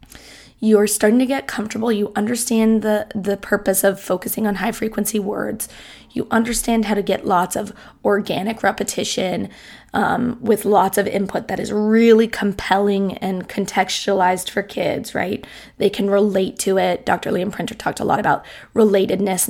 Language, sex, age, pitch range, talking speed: English, female, 20-39, 195-225 Hz, 155 wpm